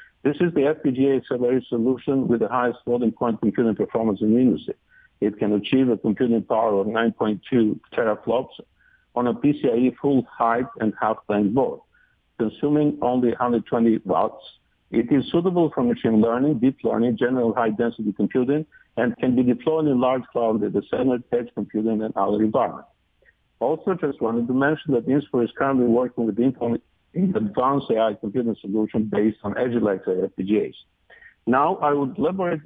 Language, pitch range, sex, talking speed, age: English, 115-135 Hz, male, 160 wpm, 50-69